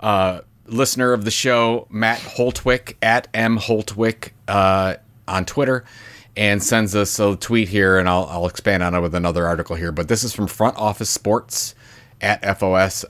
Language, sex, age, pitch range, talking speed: English, male, 30-49, 95-120 Hz, 175 wpm